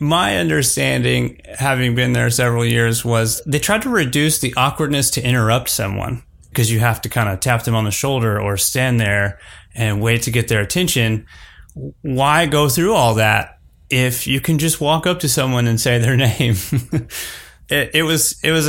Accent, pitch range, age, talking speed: American, 105-125 Hz, 30-49, 185 wpm